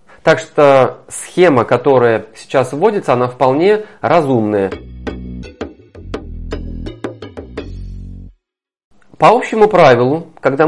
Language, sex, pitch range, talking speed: Russian, male, 130-175 Hz, 75 wpm